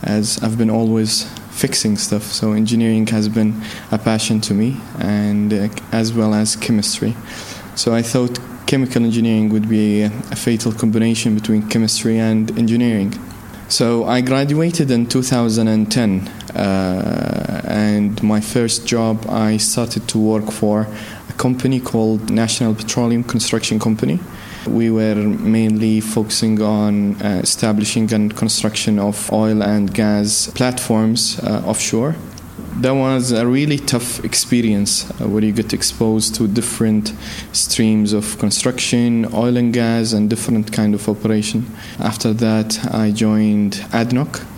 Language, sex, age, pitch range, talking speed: English, male, 20-39, 105-115 Hz, 135 wpm